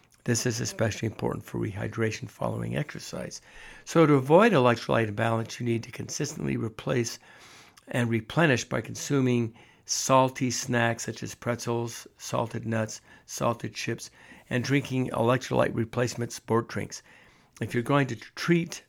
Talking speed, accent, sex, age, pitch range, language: 135 wpm, American, male, 60-79, 115-130 Hz, English